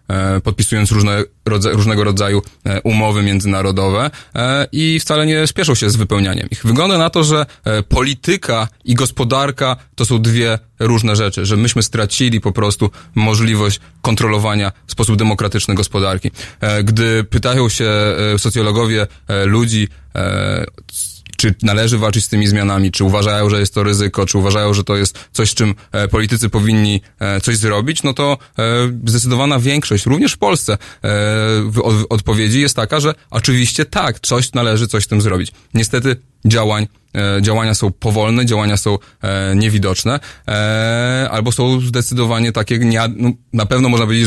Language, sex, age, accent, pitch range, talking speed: Polish, male, 20-39, native, 105-120 Hz, 135 wpm